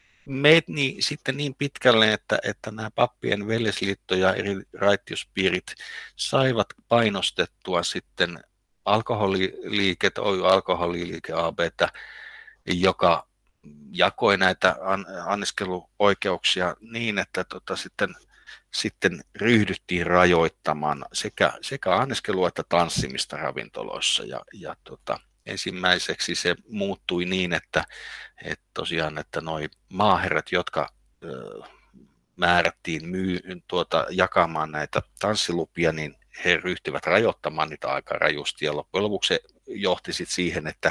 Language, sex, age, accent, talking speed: Finnish, male, 50-69, native, 105 wpm